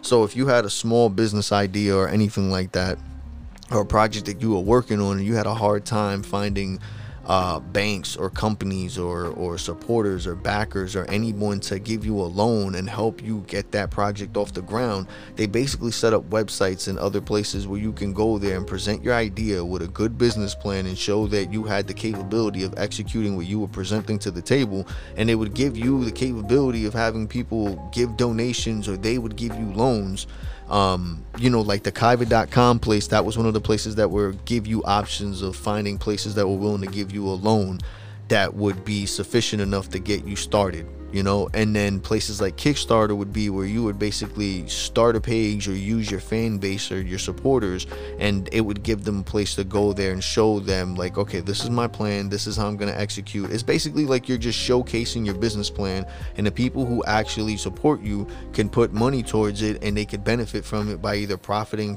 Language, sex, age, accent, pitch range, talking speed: English, male, 20-39, American, 100-110 Hz, 220 wpm